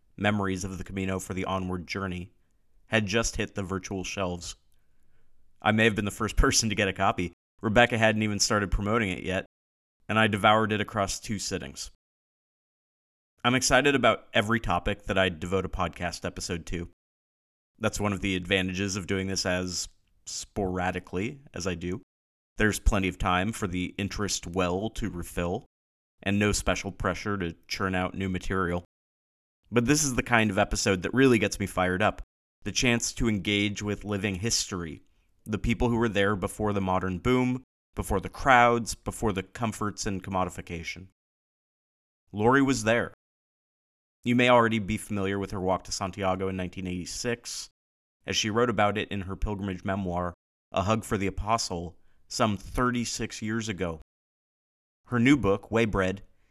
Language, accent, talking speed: English, American, 165 wpm